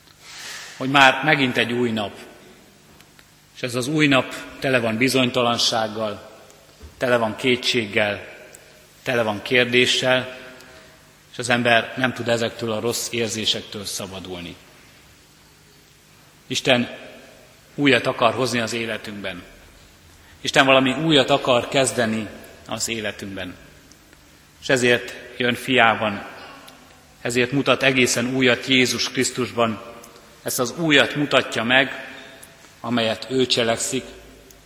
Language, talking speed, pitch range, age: Hungarian, 105 wpm, 110-130 Hz, 30-49